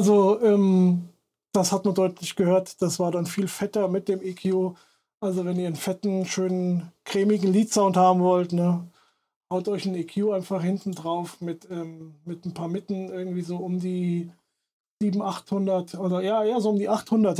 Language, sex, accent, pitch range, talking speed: German, male, German, 175-200 Hz, 180 wpm